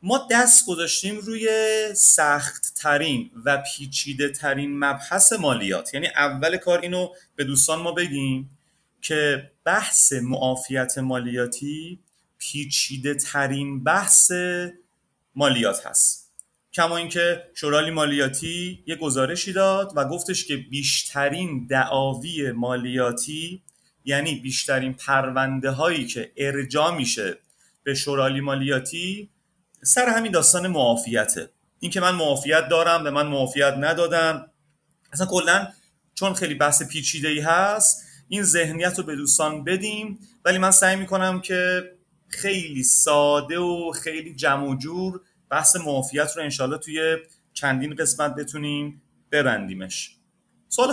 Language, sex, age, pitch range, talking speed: Persian, male, 30-49, 140-180 Hz, 115 wpm